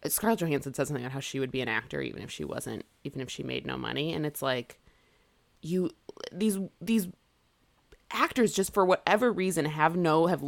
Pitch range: 145-215 Hz